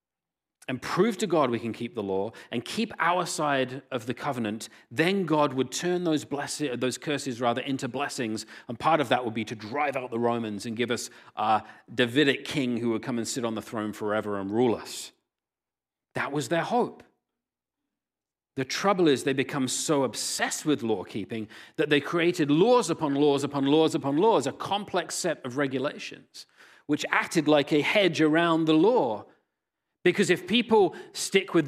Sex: male